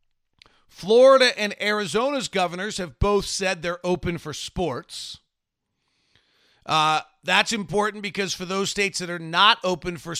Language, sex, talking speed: English, male, 135 wpm